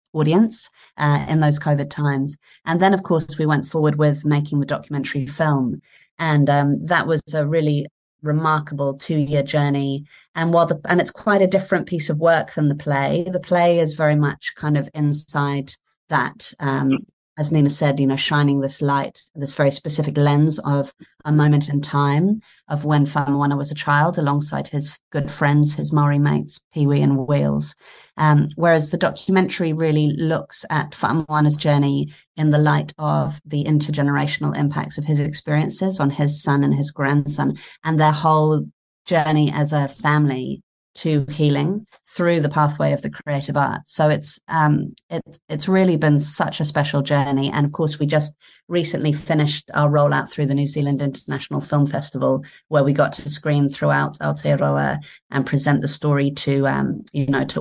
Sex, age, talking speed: female, 30-49, 175 wpm